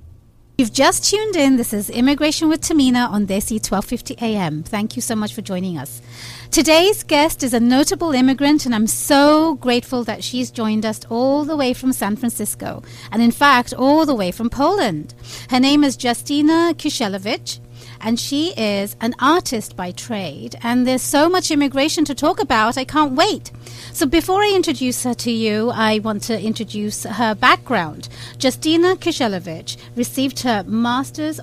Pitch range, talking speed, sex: 200-280 Hz, 170 wpm, female